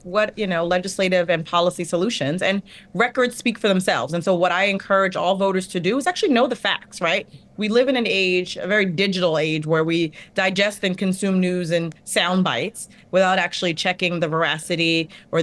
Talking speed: 200 wpm